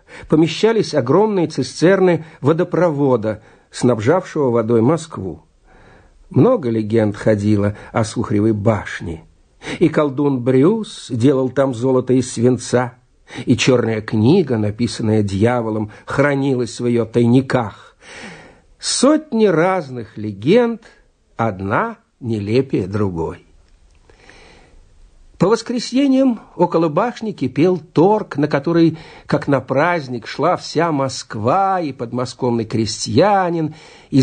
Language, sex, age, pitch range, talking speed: Russian, male, 60-79, 115-170 Hz, 95 wpm